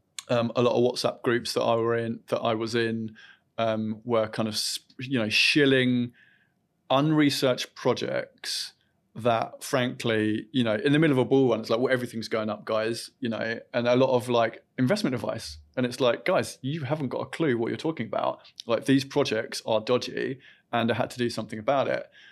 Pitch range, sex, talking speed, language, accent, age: 110-130 Hz, male, 205 wpm, English, British, 30-49